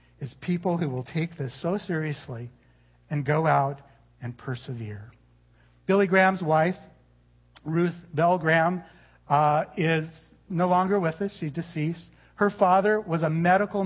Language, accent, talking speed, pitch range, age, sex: English, American, 140 wpm, 130-180 Hz, 40-59, male